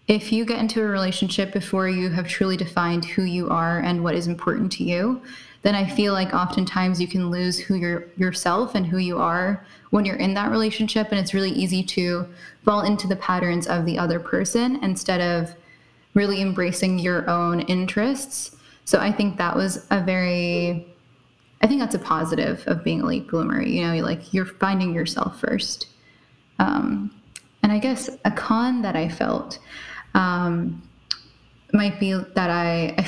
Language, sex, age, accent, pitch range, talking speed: English, female, 10-29, American, 175-215 Hz, 180 wpm